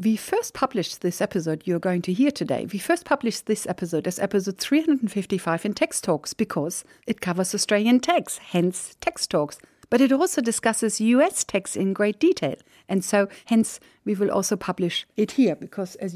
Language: English